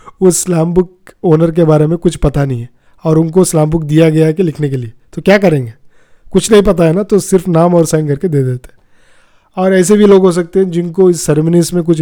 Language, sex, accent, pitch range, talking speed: Hindi, male, native, 135-180 Hz, 255 wpm